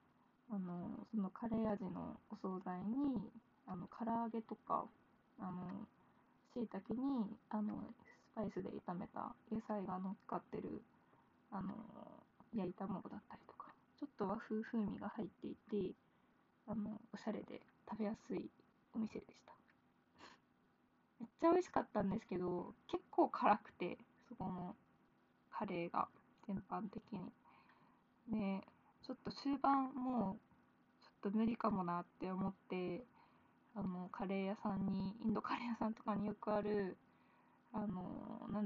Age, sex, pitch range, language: 20-39, female, 195-235 Hz, Japanese